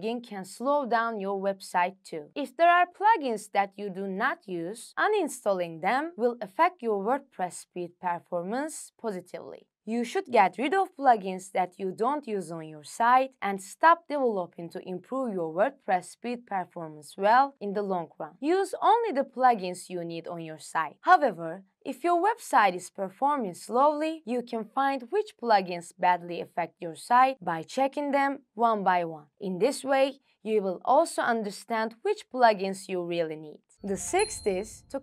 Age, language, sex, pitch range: 20-39, English, female, 180-270 Hz